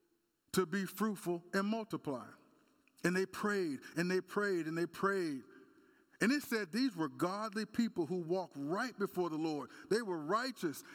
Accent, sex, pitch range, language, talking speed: American, male, 160-220 Hz, English, 165 wpm